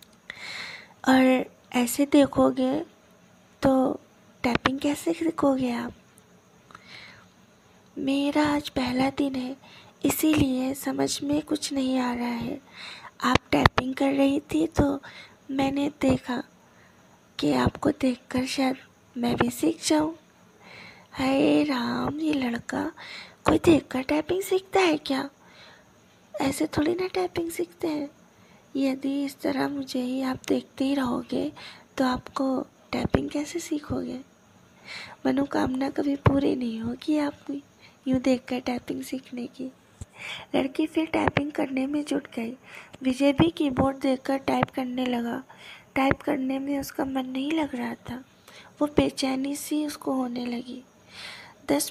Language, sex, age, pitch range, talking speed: Hindi, female, 20-39, 260-300 Hz, 125 wpm